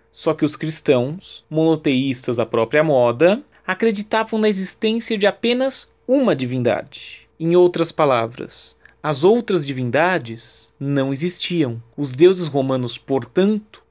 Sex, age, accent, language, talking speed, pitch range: male, 30-49, Brazilian, Portuguese, 115 wpm, 130-195 Hz